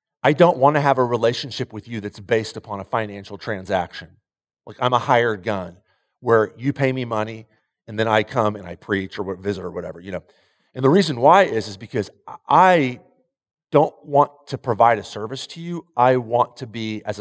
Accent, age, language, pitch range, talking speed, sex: American, 40-59, English, 105-135 Hz, 205 wpm, male